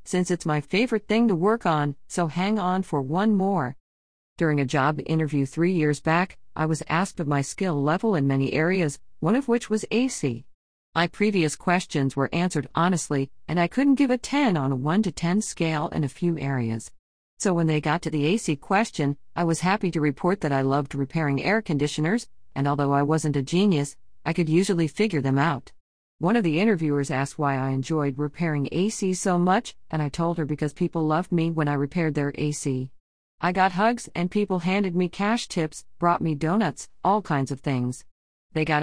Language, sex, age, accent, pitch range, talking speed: English, female, 50-69, American, 145-190 Hz, 205 wpm